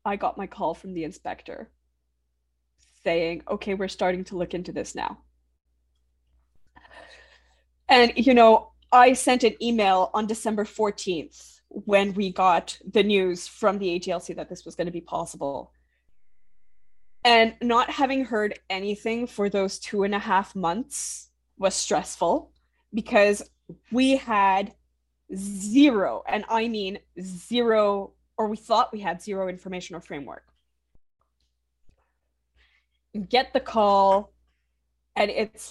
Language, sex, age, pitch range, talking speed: English, female, 20-39, 165-230 Hz, 130 wpm